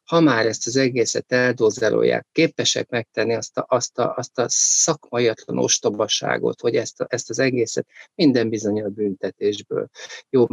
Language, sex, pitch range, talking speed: Hungarian, male, 105-125 Hz, 155 wpm